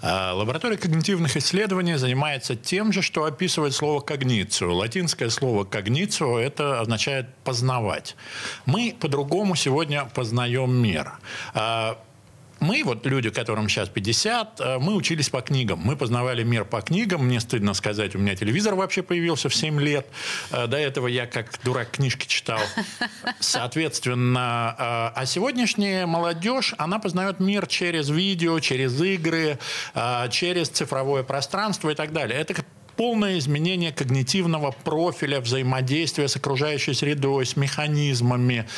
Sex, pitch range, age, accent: male, 125-170 Hz, 50-69, native